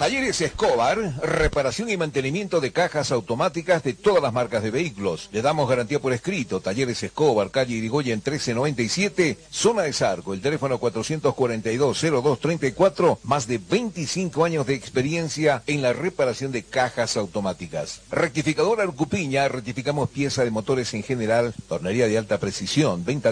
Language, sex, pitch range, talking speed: Spanish, male, 115-155 Hz, 140 wpm